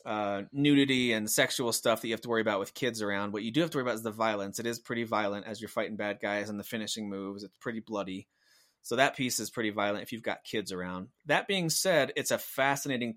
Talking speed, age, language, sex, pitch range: 260 wpm, 20-39, English, male, 110-130 Hz